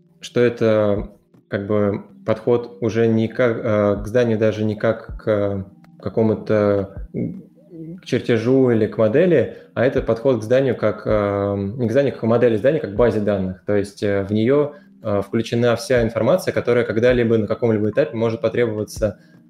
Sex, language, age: male, Russian, 20-39